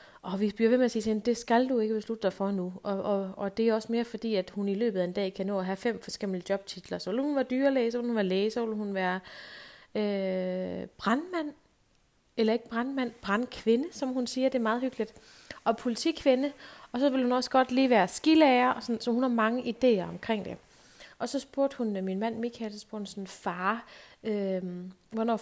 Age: 30-49